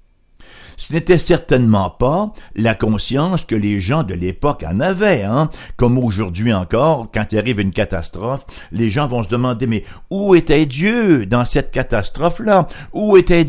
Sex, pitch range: male, 100-155 Hz